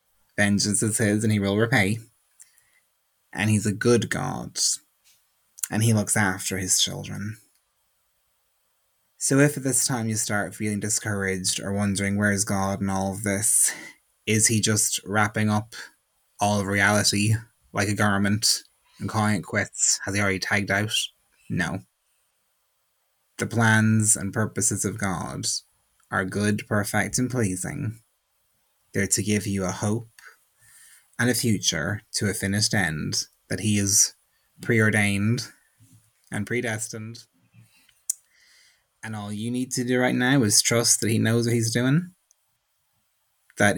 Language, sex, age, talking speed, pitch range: English, male, 20-39, 145 wpm, 100-115 Hz